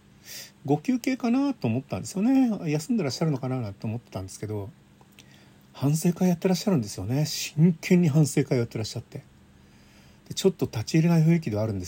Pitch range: 105-155 Hz